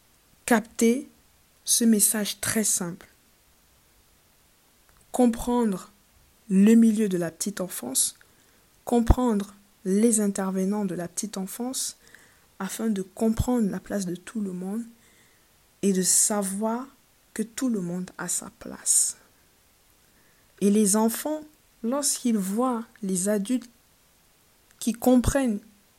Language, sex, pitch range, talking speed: French, female, 190-230 Hz, 110 wpm